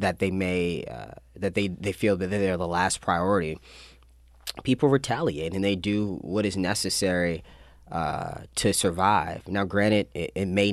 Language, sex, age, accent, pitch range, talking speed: English, male, 20-39, American, 85-100 Hz, 160 wpm